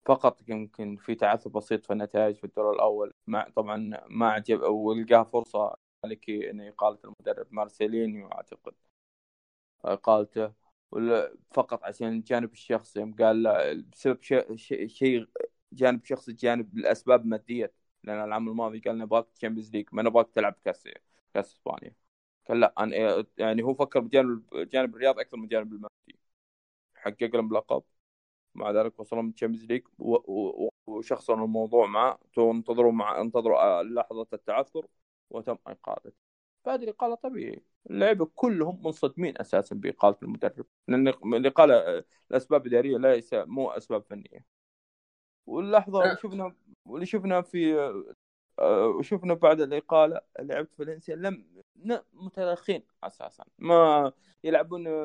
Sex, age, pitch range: male, 20-39, 110-170 Hz